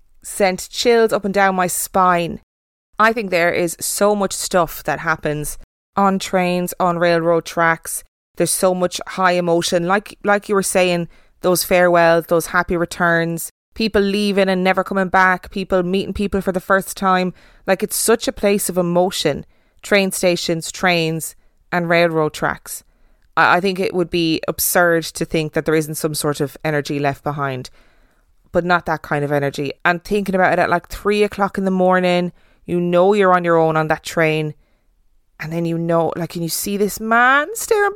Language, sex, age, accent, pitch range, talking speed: English, female, 20-39, Irish, 165-195 Hz, 185 wpm